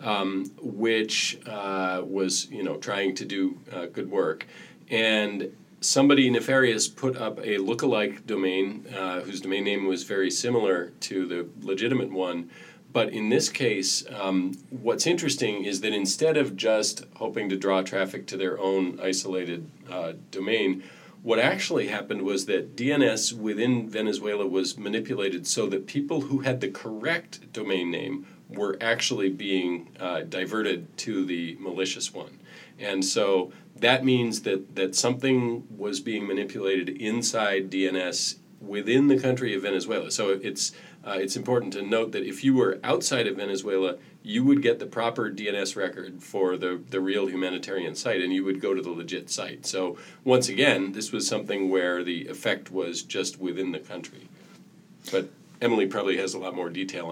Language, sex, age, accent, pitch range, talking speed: English, male, 40-59, American, 95-125 Hz, 165 wpm